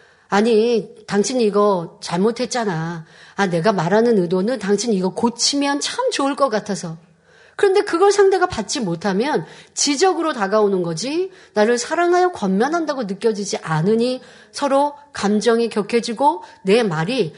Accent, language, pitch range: native, Korean, 205-310 Hz